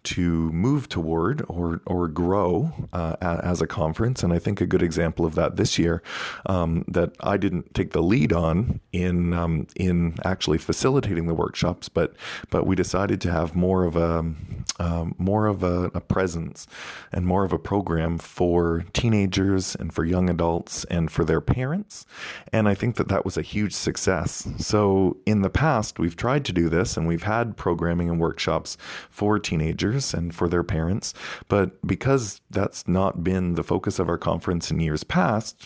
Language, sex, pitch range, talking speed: English, male, 85-100 Hz, 185 wpm